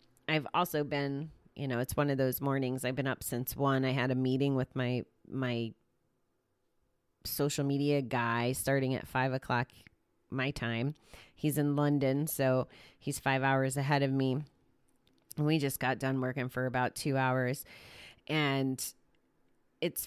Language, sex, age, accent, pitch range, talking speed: English, female, 30-49, American, 125-145 Hz, 155 wpm